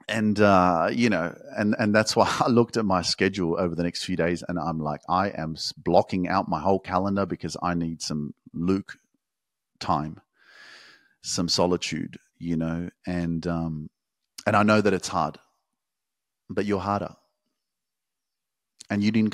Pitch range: 90-105 Hz